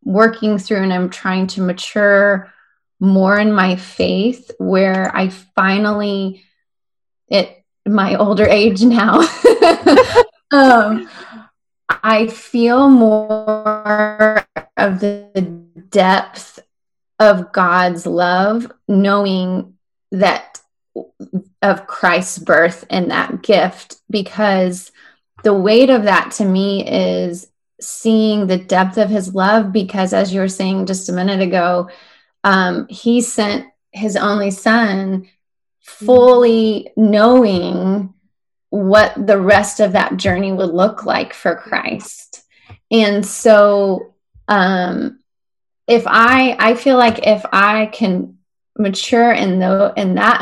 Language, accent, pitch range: English, American, 190-220 Hz